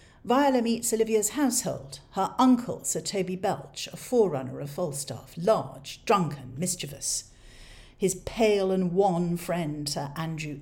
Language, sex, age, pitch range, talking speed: English, female, 50-69, 140-190 Hz, 130 wpm